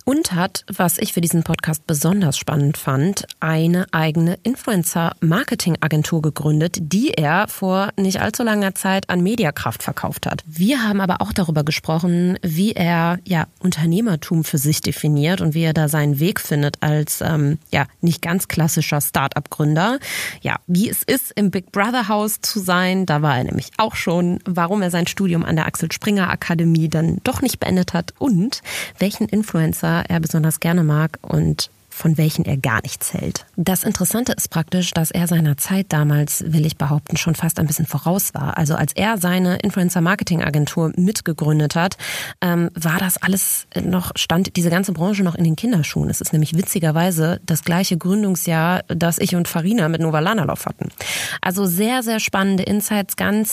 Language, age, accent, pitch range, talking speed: German, 30-49, German, 160-195 Hz, 175 wpm